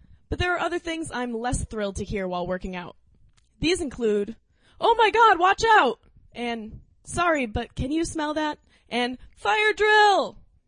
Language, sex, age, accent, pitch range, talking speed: English, female, 20-39, American, 205-300 Hz, 170 wpm